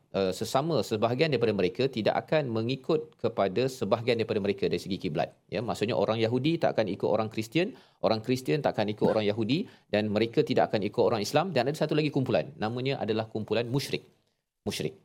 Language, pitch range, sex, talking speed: Malayalam, 110-145 Hz, male, 190 wpm